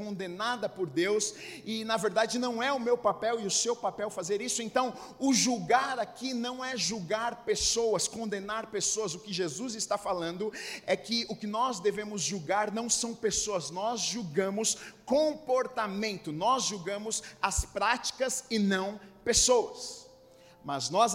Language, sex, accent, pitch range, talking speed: Portuguese, male, Brazilian, 185-225 Hz, 155 wpm